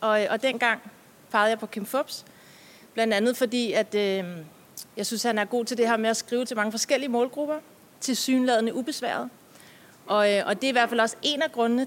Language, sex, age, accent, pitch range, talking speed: English, female, 30-49, Danish, 210-245 Hz, 205 wpm